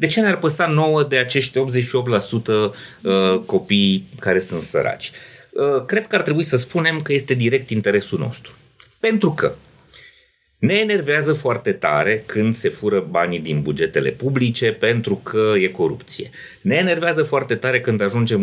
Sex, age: male, 30-49